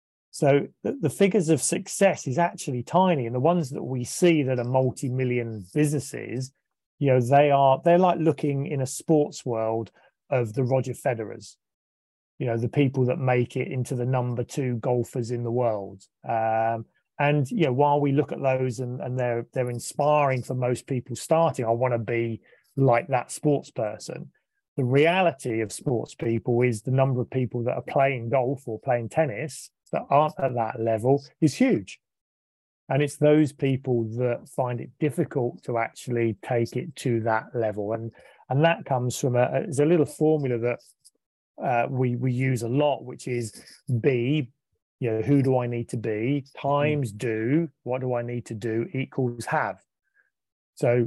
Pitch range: 120-145 Hz